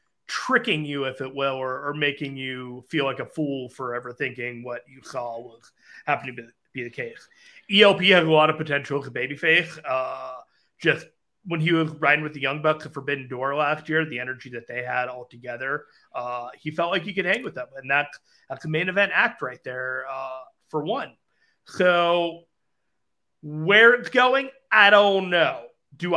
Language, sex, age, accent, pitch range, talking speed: English, male, 30-49, American, 135-185 Hz, 195 wpm